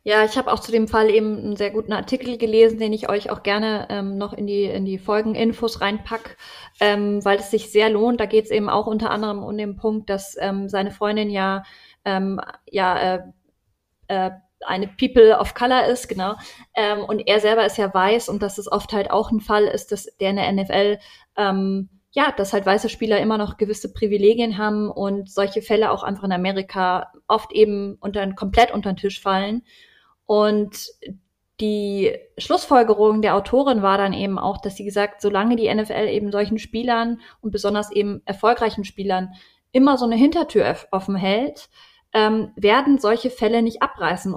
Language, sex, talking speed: German, female, 190 wpm